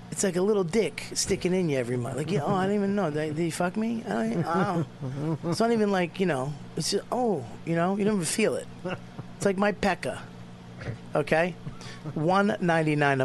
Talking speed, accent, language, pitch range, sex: 215 wpm, American, English, 150-210 Hz, male